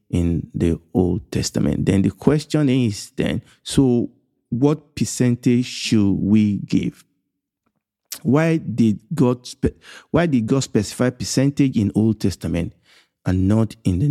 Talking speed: 130 wpm